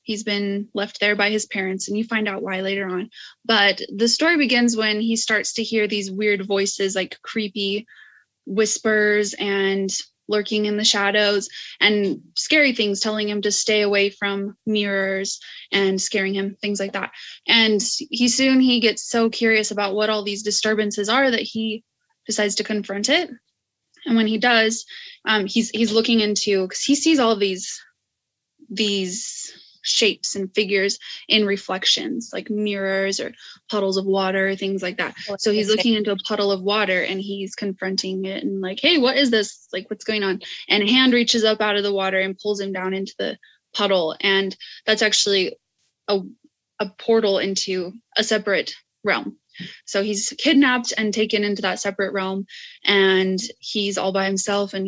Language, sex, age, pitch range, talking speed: English, female, 20-39, 195-225 Hz, 175 wpm